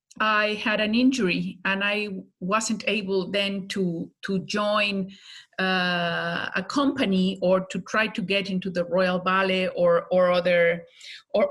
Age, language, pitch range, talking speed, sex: 50-69, English, 190-245 Hz, 145 wpm, female